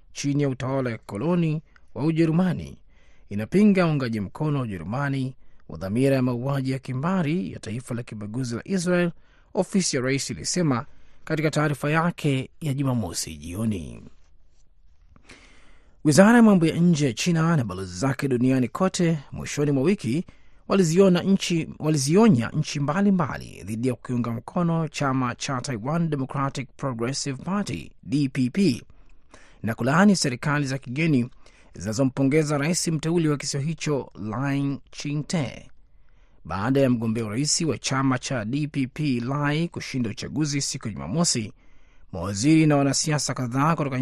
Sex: male